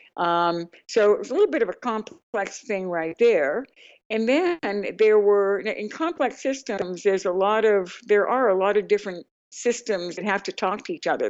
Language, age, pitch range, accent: English, 60-79, 180-235 Hz, American